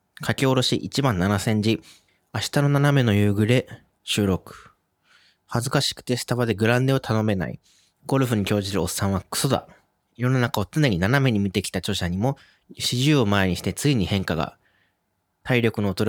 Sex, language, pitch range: male, Japanese, 95-125 Hz